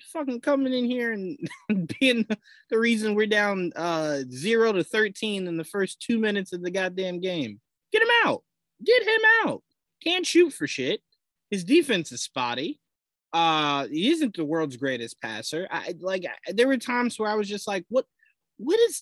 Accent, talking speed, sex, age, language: American, 180 wpm, male, 20-39, English